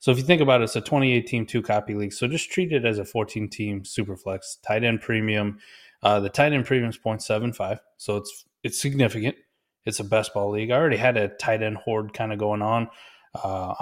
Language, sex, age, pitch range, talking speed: English, male, 20-39, 105-135 Hz, 215 wpm